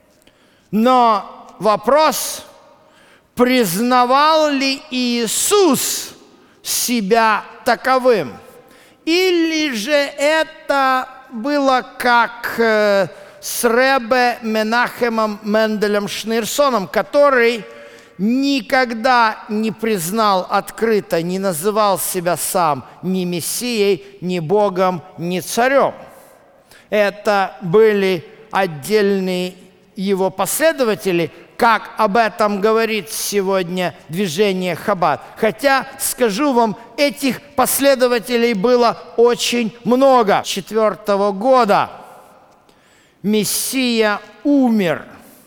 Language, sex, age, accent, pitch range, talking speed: Russian, male, 50-69, native, 195-255 Hz, 75 wpm